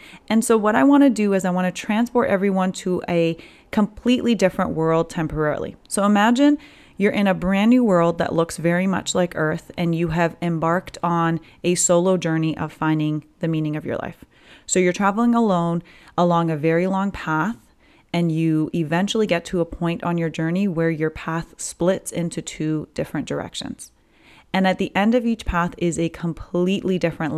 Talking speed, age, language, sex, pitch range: 190 wpm, 30-49, English, female, 160-190 Hz